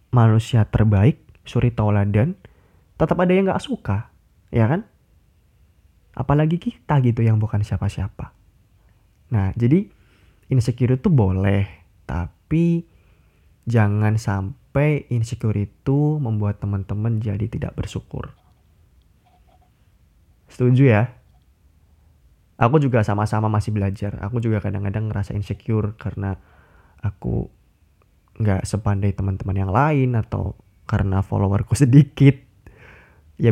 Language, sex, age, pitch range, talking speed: Indonesian, male, 20-39, 95-120 Hz, 100 wpm